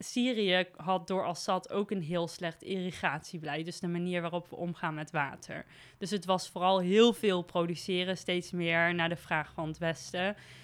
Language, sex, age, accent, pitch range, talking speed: Dutch, female, 20-39, Dutch, 170-200 Hz, 180 wpm